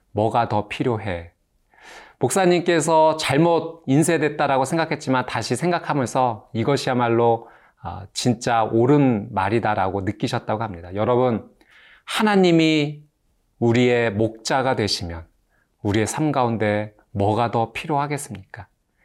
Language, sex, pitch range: Korean, male, 105-150 Hz